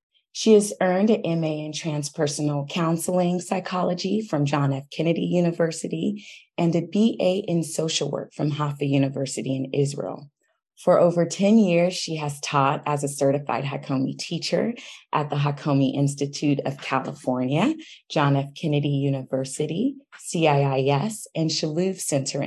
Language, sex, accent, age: English, female, American, 30-49